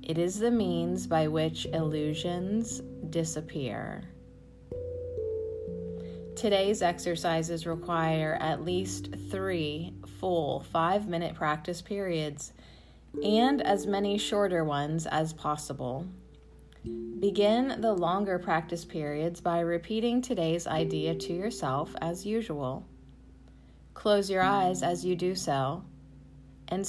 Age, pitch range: 30-49, 150-195 Hz